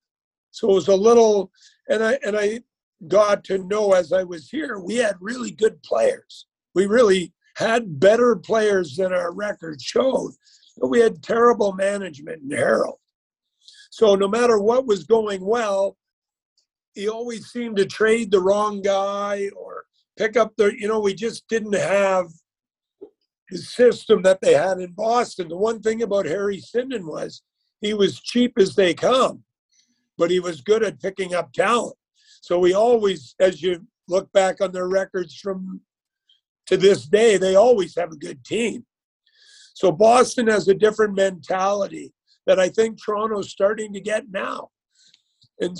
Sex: male